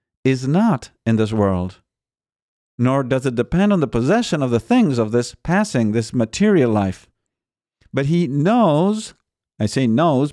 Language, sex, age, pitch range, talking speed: English, male, 50-69, 110-145 Hz, 155 wpm